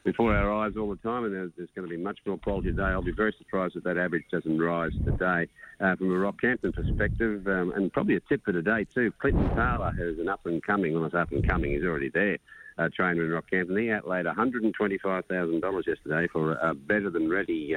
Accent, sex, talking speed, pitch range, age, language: Australian, male, 200 wpm, 80-95 Hz, 50-69, English